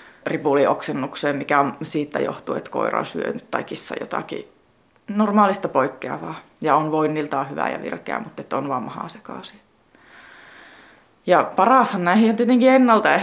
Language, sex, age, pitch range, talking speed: Finnish, female, 20-39, 150-190 Hz, 135 wpm